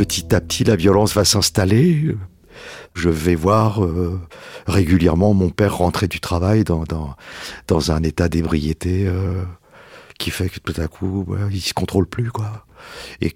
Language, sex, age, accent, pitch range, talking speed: French, male, 50-69, French, 90-105 Hz, 155 wpm